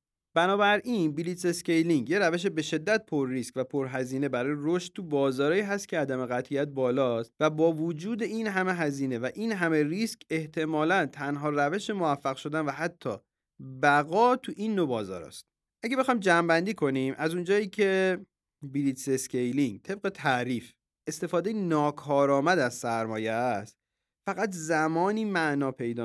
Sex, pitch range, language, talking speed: male, 140-200 Hz, Persian, 145 wpm